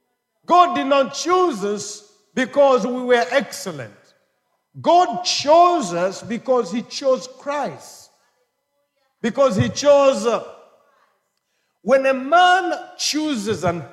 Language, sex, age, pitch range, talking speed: English, male, 50-69, 215-290 Hz, 110 wpm